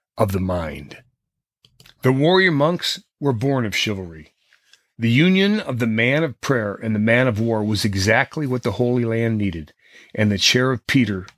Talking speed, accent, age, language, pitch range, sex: 180 wpm, American, 40-59, English, 105-150 Hz, male